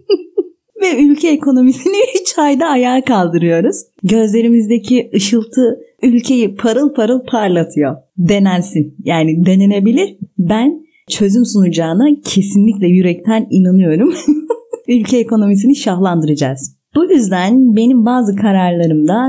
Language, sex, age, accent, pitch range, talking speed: Turkish, female, 30-49, native, 170-245 Hz, 90 wpm